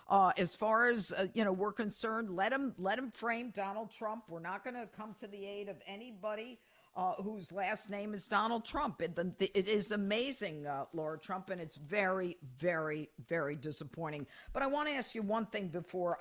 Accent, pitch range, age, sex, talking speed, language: American, 175-225 Hz, 50-69, female, 200 wpm, English